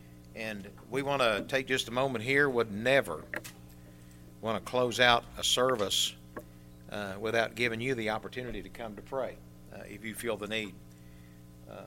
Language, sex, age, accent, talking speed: English, male, 60-79, American, 170 wpm